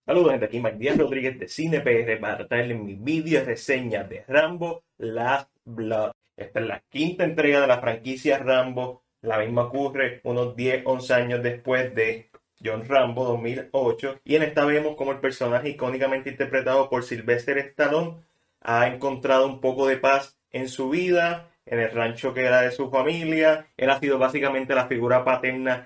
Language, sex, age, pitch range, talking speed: Spanish, male, 20-39, 120-145 Hz, 165 wpm